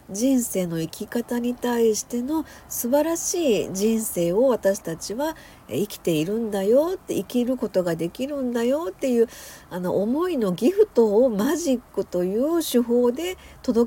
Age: 50-69